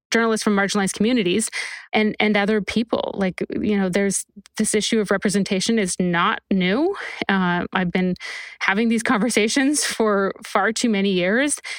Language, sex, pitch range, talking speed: English, female, 195-220 Hz, 155 wpm